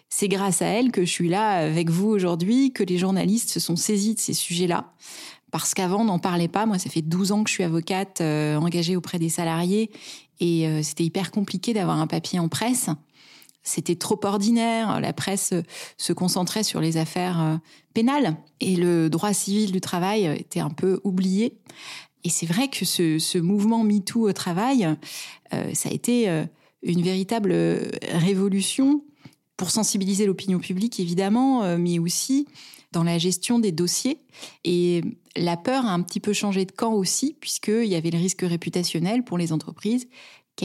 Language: French